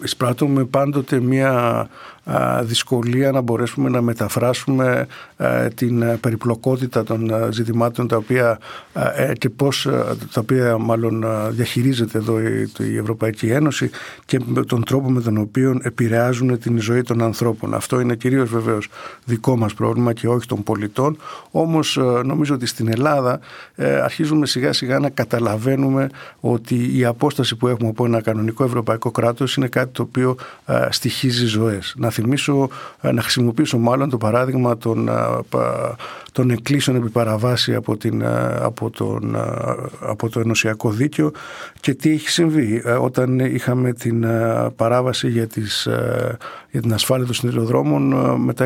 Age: 60-79